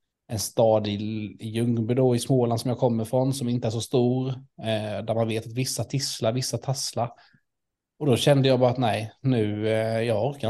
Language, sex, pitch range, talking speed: Swedish, male, 115-130 Hz, 205 wpm